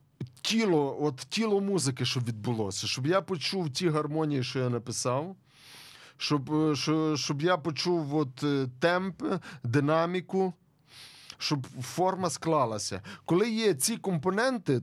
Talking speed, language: 115 wpm, Ukrainian